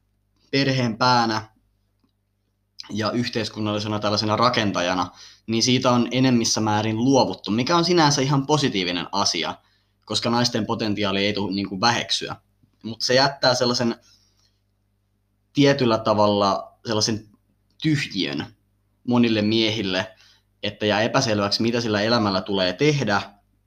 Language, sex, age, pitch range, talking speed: Finnish, male, 20-39, 100-115 Hz, 105 wpm